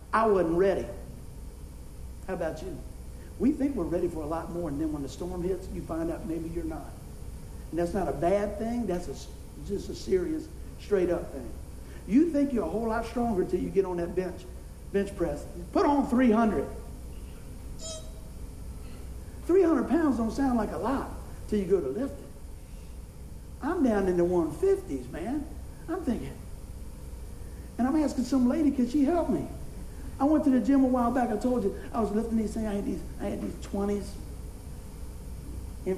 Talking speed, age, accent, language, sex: 185 wpm, 60-79, American, English, male